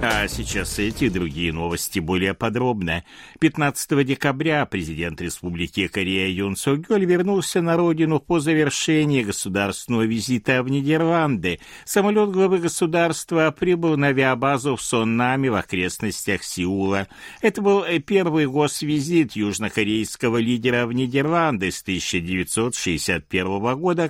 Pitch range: 95-155 Hz